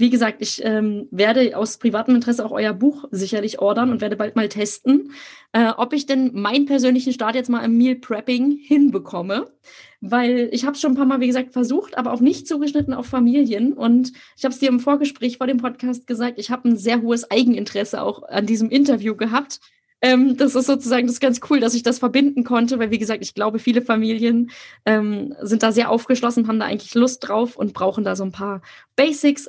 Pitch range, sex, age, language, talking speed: 215-260 Hz, female, 20-39, German, 220 wpm